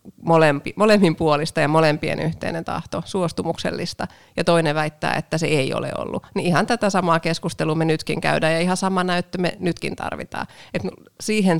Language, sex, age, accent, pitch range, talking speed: Finnish, female, 30-49, native, 160-190 Hz, 170 wpm